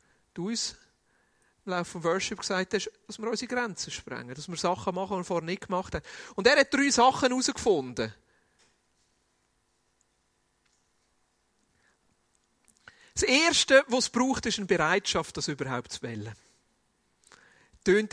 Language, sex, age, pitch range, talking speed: German, male, 40-59, 180-245 Hz, 140 wpm